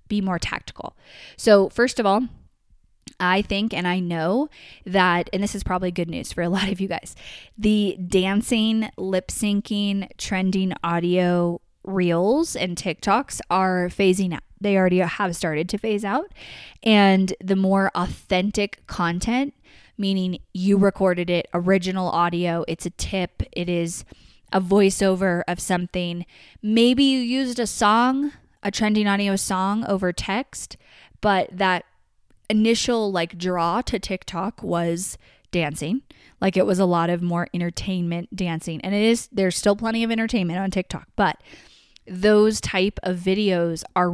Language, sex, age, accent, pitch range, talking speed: English, female, 20-39, American, 175-210 Hz, 150 wpm